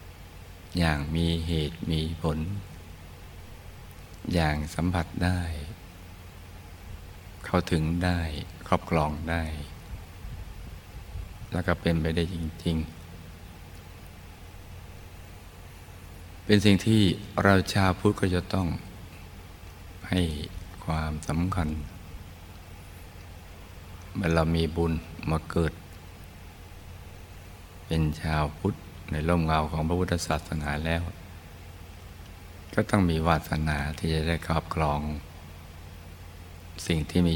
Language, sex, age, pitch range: Thai, male, 60-79, 80-90 Hz